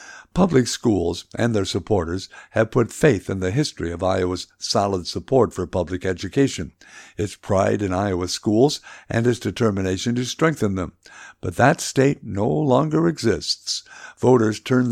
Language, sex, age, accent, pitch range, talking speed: English, male, 60-79, American, 95-120 Hz, 150 wpm